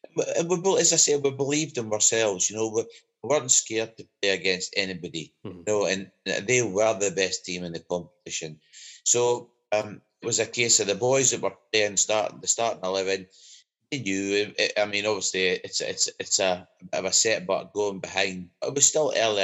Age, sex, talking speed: 30-49, male, 195 wpm